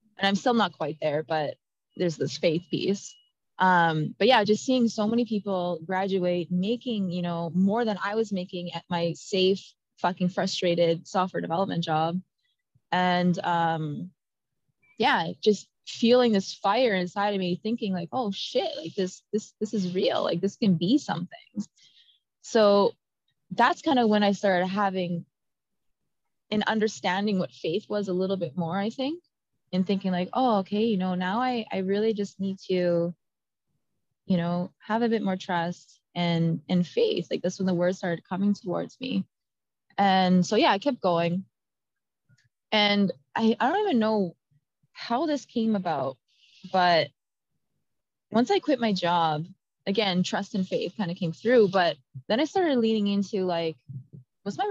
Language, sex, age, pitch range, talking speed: English, female, 20-39, 175-215 Hz, 165 wpm